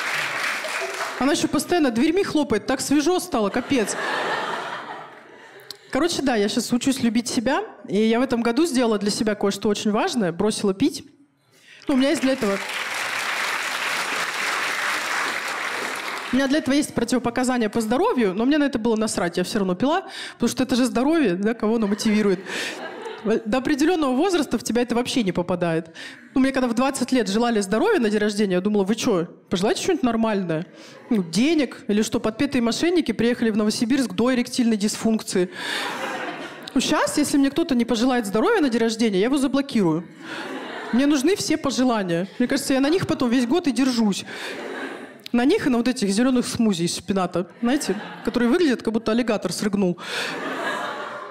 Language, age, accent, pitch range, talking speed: Russian, 30-49, native, 215-275 Hz, 170 wpm